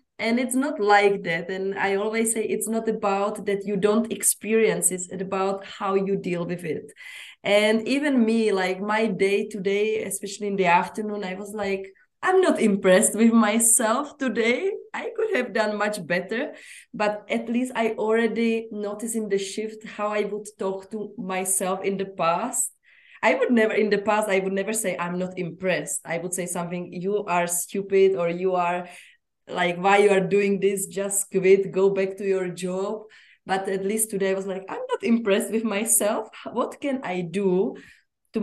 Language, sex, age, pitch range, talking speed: English, female, 20-39, 185-215 Hz, 185 wpm